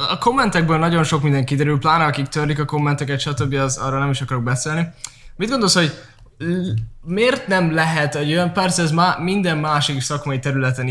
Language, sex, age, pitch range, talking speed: Hungarian, male, 10-29, 130-155 Hz, 175 wpm